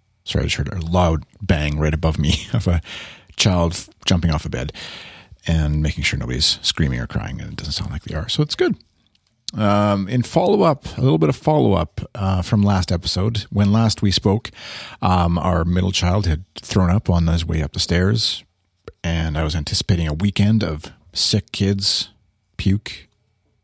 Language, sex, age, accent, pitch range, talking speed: English, male, 40-59, American, 90-110 Hz, 185 wpm